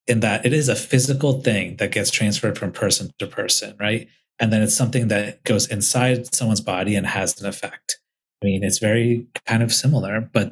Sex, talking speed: male, 205 wpm